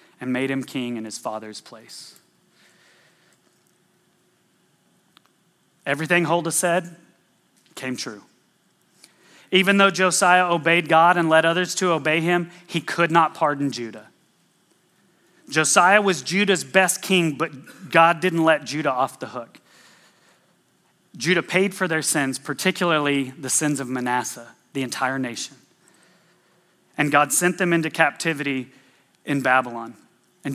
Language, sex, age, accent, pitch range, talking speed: English, male, 30-49, American, 150-185 Hz, 125 wpm